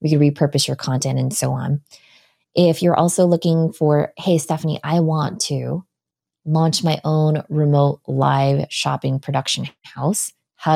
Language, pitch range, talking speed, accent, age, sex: English, 145-170 Hz, 150 wpm, American, 20-39, female